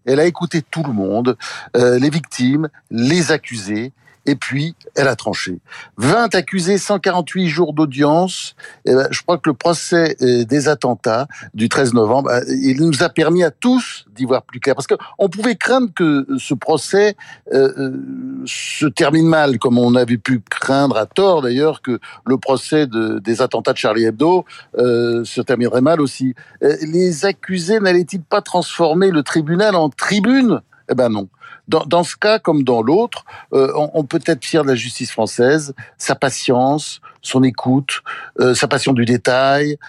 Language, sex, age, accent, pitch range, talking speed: French, male, 60-79, French, 130-185 Hz, 170 wpm